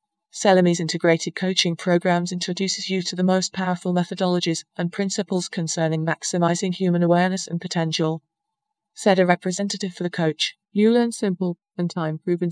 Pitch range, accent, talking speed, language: 165-195 Hz, British, 145 wpm, English